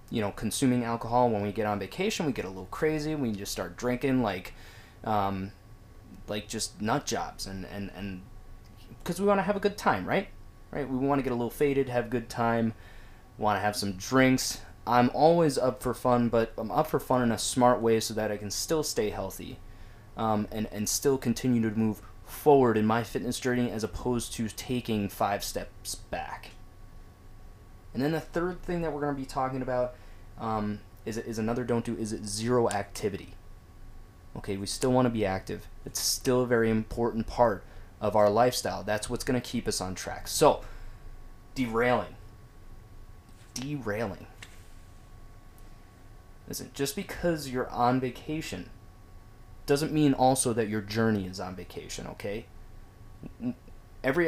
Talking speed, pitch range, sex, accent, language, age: 175 wpm, 100-125 Hz, male, American, English, 20-39